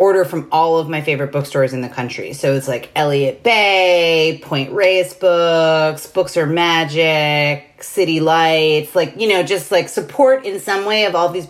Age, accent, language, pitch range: 30-49, American, English, 150-210 Hz